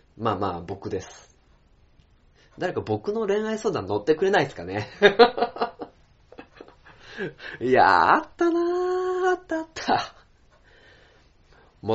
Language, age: Japanese, 20-39